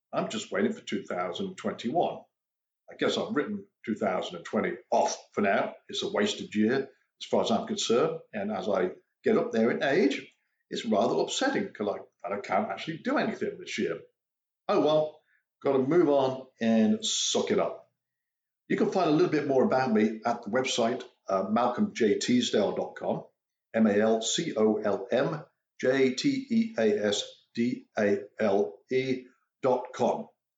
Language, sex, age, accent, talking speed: English, male, 50-69, British, 135 wpm